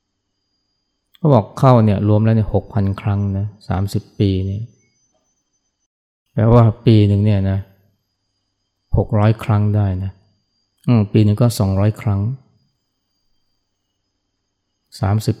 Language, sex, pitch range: Thai, male, 95-110 Hz